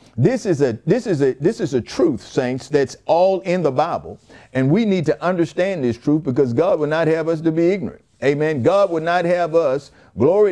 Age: 50-69